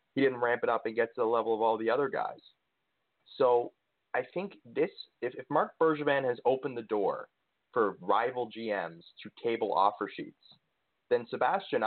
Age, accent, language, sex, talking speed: 30-49, American, English, male, 180 wpm